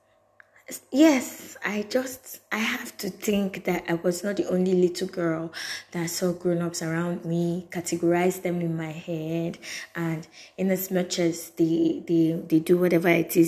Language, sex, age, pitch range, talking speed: English, female, 20-39, 160-175 Hz, 165 wpm